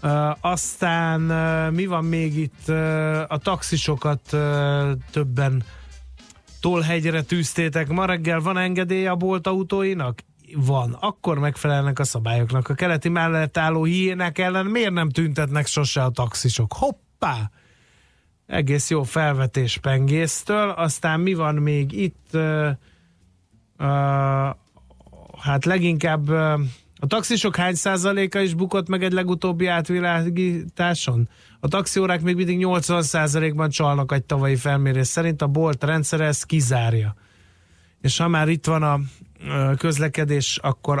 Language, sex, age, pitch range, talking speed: Hungarian, male, 30-49, 135-170 Hz, 115 wpm